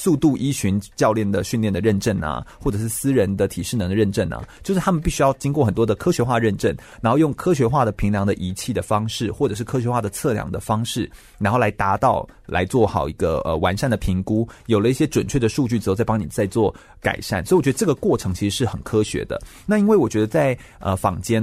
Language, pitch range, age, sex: Chinese, 105-135 Hz, 30-49, male